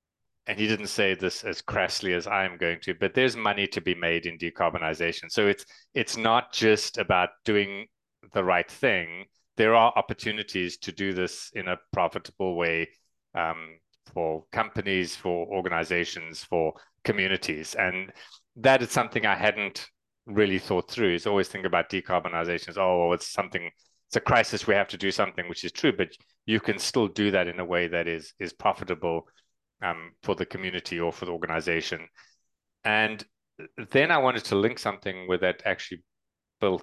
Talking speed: 175 wpm